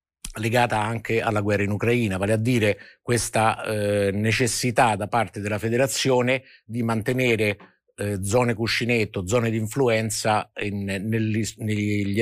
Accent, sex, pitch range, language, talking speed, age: native, male, 100-115 Hz, Italian, 130 wpm, 50-69